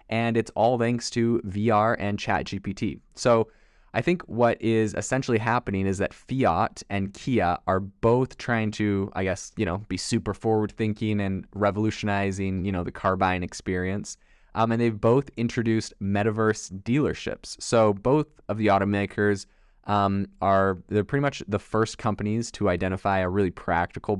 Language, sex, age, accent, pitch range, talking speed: English, male, 20-39, American, 95-115 Hz, 165 wpm